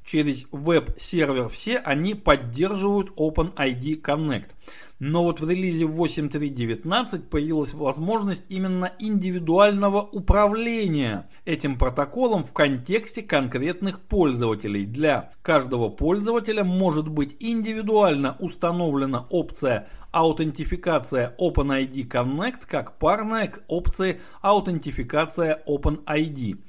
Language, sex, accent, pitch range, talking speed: Russian, male, native, 135-195 Hz, 90 wpm